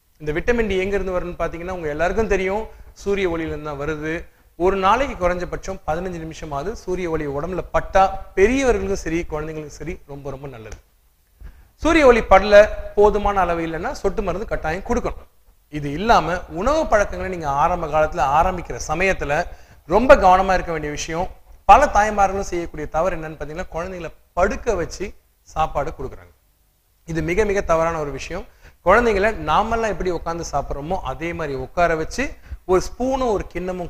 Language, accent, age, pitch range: Tamil, native, 30-49, 150-190 Hz